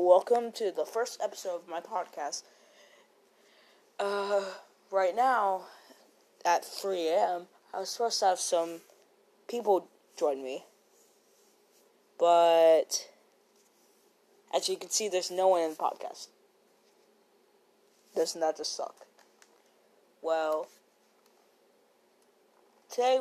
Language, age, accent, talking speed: English, 20-39, American, 100 wpm